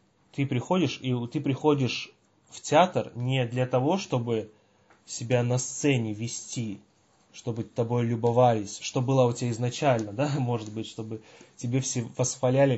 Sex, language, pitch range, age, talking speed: male, Russian, 110-135 Hz, 20-39, 140 wpm